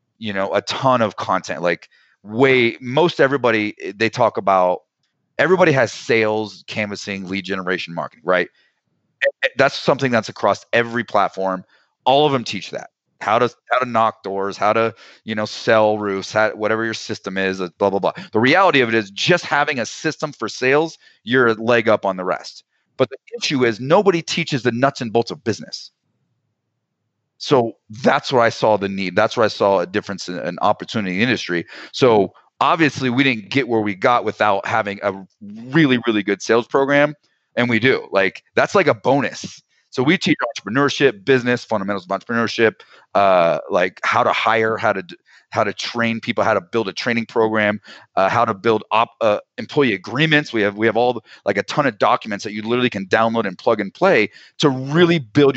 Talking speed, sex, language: 190 wpm, male, English